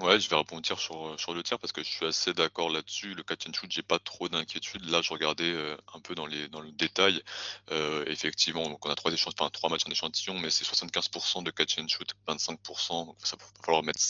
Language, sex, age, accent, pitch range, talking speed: French, male, 20-39, French, 80-90 Hz, 245 wpm